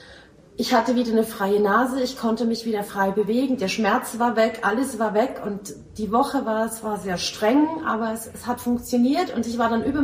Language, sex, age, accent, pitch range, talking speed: German, female, 30-49, German, 220-260 Hz, 220 wpm